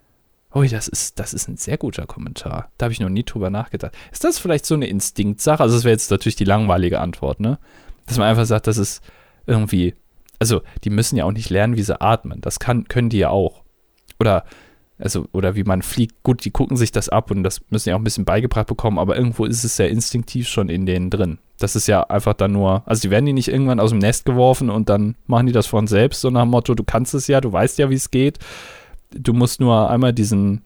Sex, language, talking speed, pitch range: male, German, 245 wpm, 100-120 Hz